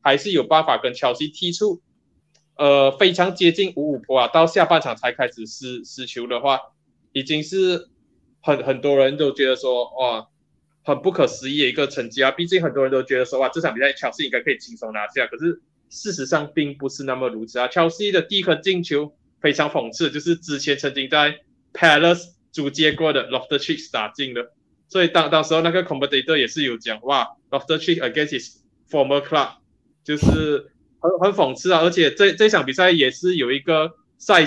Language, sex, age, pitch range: Chinese, male, 20-39, 135-175 Hz